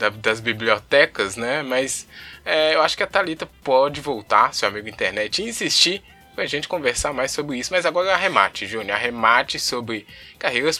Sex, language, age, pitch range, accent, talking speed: male, Portuguese, 20-39, 115-175 Hz, Brazilian, 170 wpm